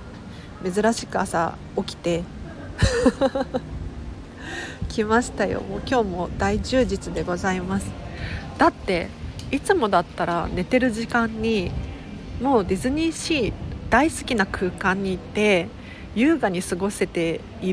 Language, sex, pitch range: Japanese, female, 180-255 Hz